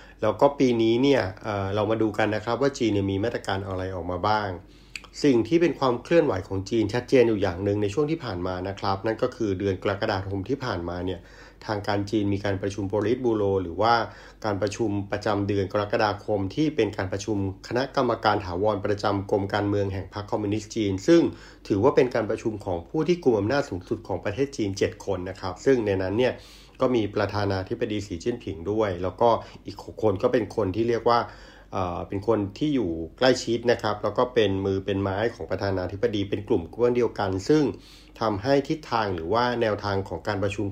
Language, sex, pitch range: Thai, male, 95-120 Hz